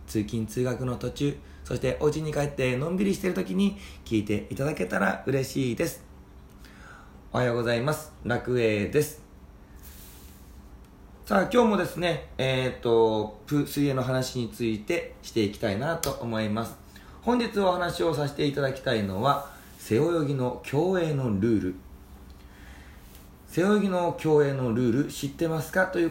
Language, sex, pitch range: Japanese, male, 105-155 Hz